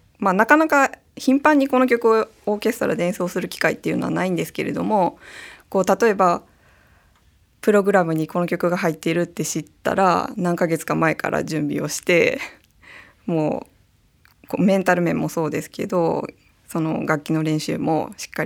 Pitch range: 155-205 Hz